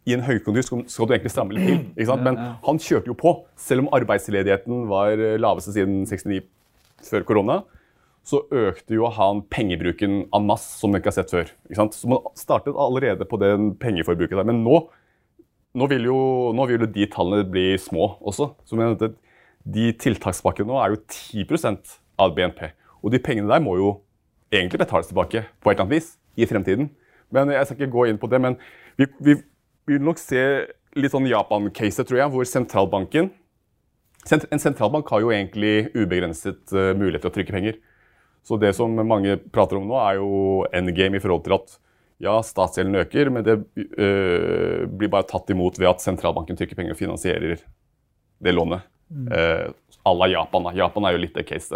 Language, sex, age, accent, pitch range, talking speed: English, male, 30-49, Norwegian, 95-130 Hz, 175 wpm